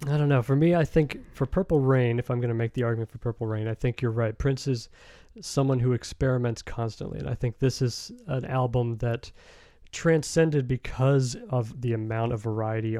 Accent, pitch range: American, 110-130 Hz